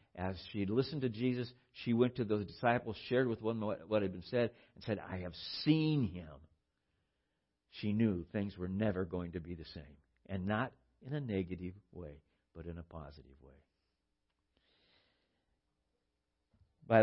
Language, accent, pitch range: English, American, 95-125 Hz